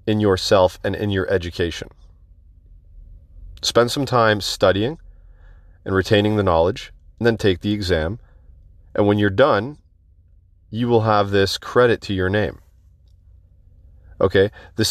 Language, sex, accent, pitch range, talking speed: English, male, American, 85-100 Hz, 135 wpm